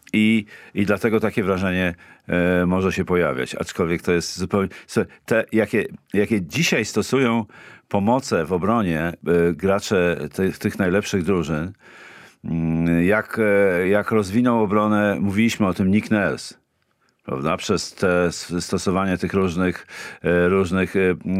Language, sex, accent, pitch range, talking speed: Polish, male, native, 90-110 Hz, 125 wpm